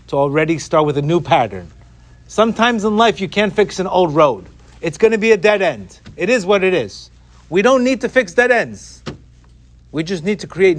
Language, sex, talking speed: English, male, 220 wpm